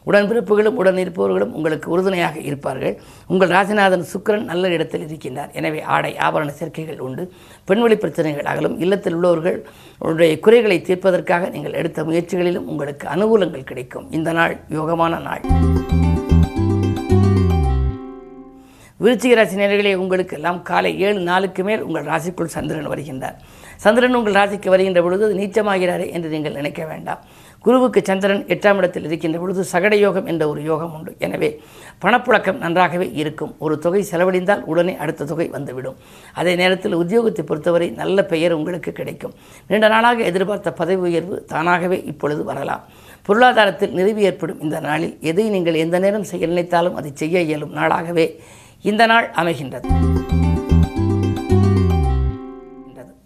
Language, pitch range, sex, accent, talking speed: Tamil, 150-195 Hz, female, native, 125 wpm